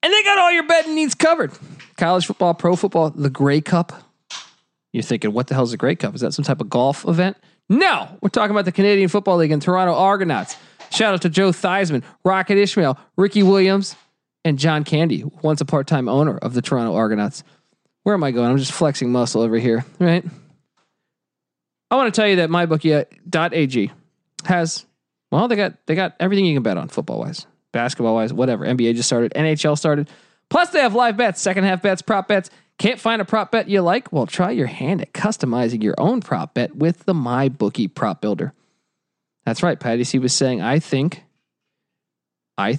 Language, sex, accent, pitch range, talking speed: English, male, American, 135-195 Hz, 205 wpm